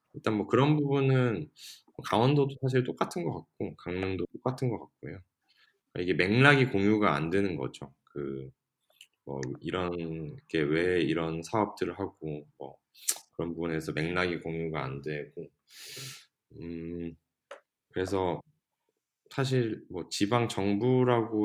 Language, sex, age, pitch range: Korean, male, 20-39, 85-125 Hz